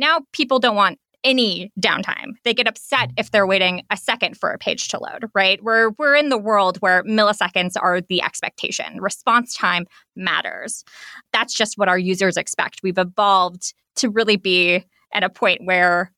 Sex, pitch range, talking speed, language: female, 190-235 Hz, 180 wpm, English